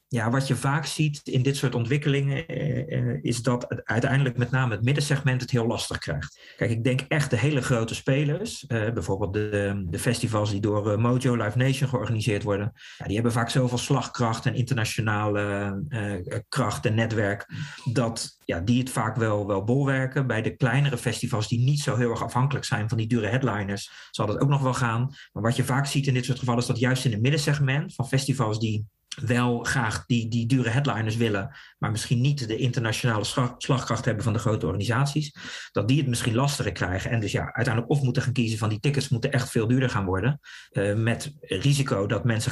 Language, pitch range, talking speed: Dutch, 110-135 Hz, 205 wpm